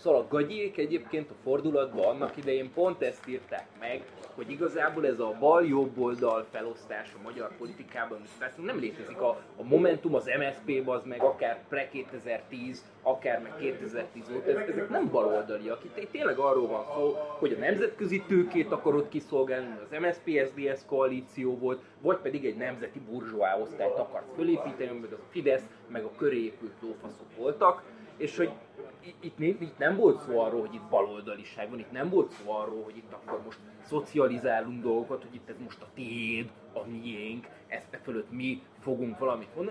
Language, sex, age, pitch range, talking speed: Hungarian, male, 20-39, 115-170 Hz, 165 wpm